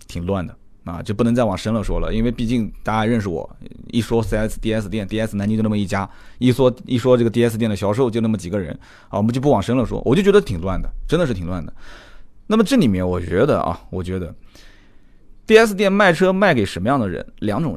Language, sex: Chinese, male